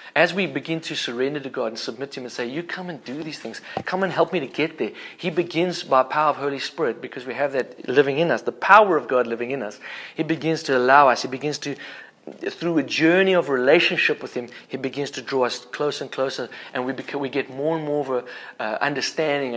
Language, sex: English, male